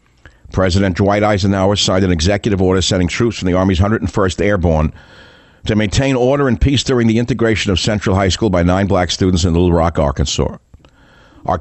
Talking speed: 180 wpm